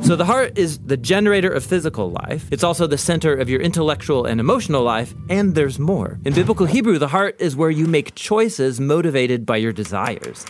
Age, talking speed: 40-59, 215 wpm